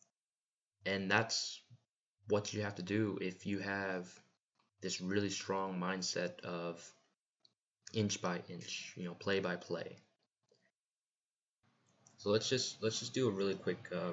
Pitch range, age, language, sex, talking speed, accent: 90-110 Hz, 20-39, English, male, 140 wpm, American